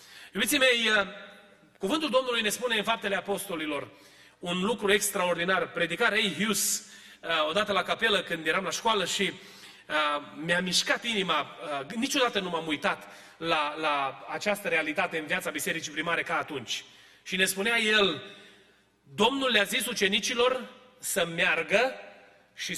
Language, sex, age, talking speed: Romanian, male, 30-49, 135 wpm